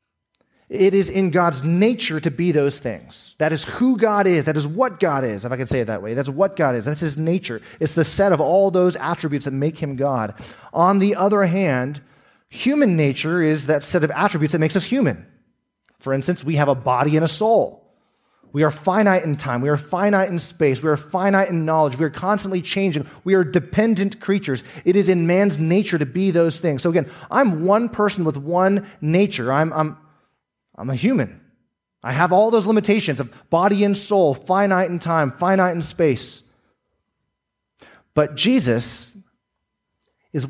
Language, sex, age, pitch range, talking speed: English, male, 30-49, 145-195 Hz, 195 wpm